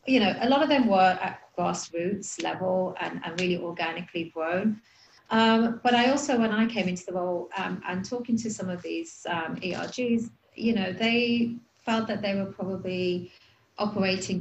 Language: English